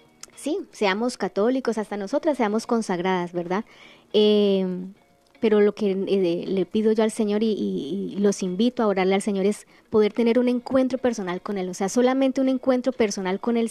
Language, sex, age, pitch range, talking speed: Spanish, male, 20-39, 200-235 Hz, 190 wpm